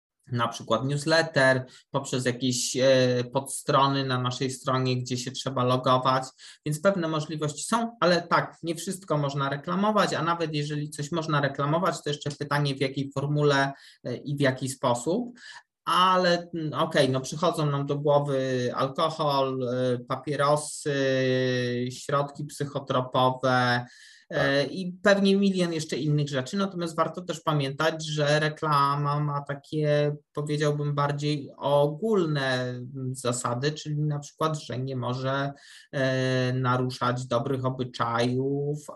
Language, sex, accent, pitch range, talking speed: Polish, male, native, 125-150 Hz, 120 wpm